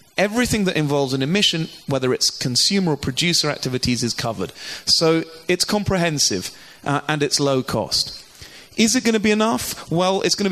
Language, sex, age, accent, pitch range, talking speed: English, male, 30-49, British, 125-170 Hz, 175 wpm